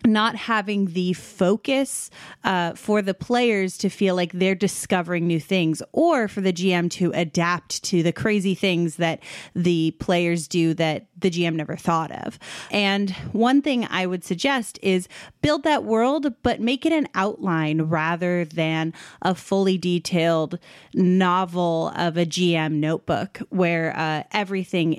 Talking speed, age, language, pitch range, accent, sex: 150 wpm, 30-49, English, 170-205 Hz, American, female